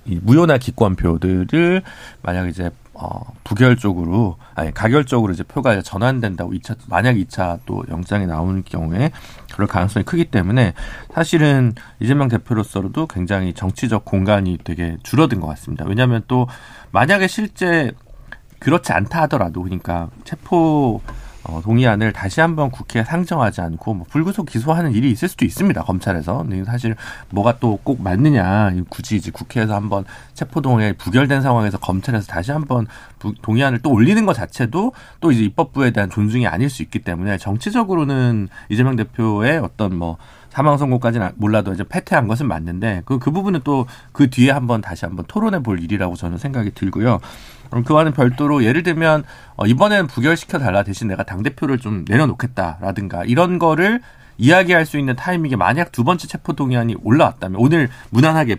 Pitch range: 95-140 Hz